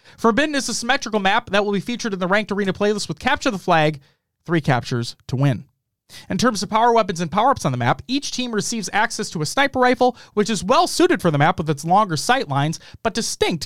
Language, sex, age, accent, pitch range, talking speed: English, male, 30-49, American, 170-235 Hz, 235 wpm